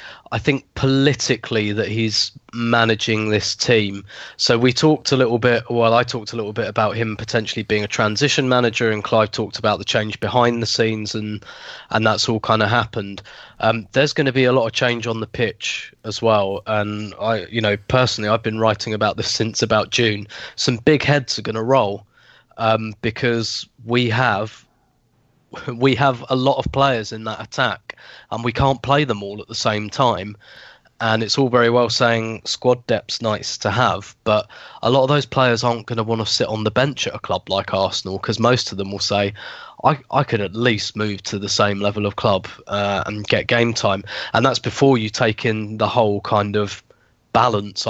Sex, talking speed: male, 205 wpm